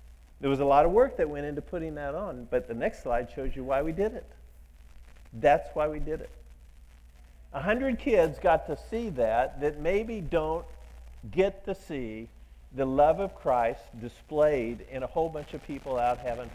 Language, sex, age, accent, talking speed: English, male, 50-69, American, 190 wpm